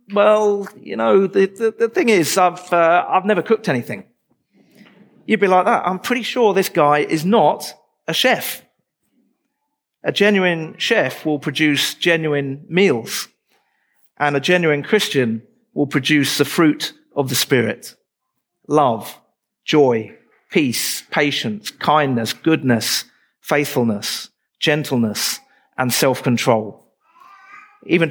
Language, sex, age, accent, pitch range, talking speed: English, male, 40-59, British, 145-200 Hz, 120 wpm